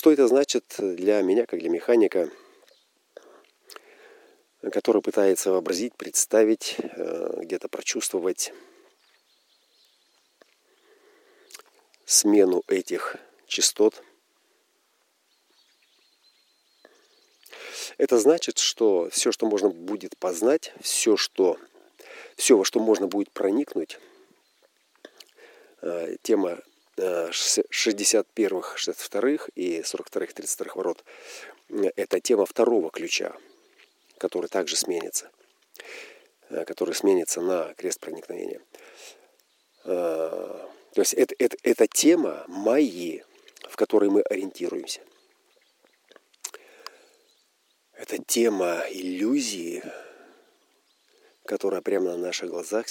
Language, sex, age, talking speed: Russian, male, 40-59, 75 wpm